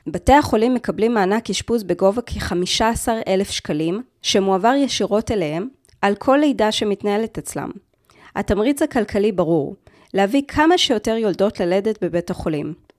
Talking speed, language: 120 wpm, Hebrew